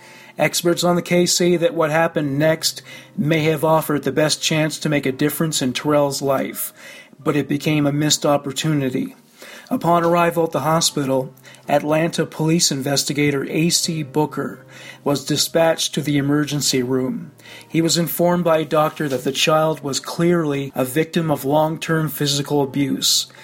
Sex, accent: male, American